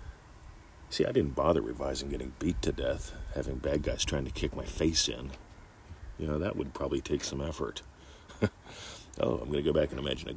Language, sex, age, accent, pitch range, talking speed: English, male, 50-69, American, 80-105 Hz, 205 wpm